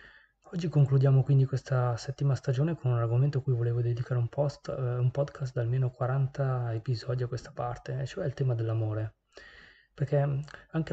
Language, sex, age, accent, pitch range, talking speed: Italian, male, 20-39, native, 120-140 Hz, 170 wpm